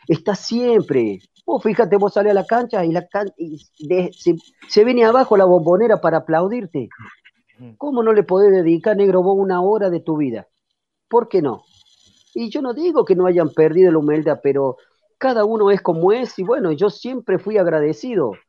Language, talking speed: Spanish, 190 wpm